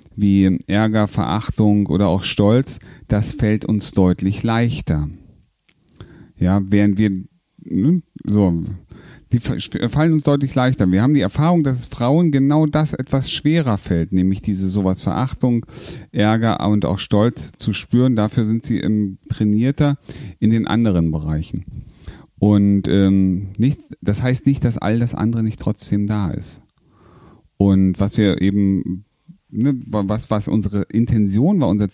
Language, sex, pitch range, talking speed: German, male, 100-140 Hz, 140 wpm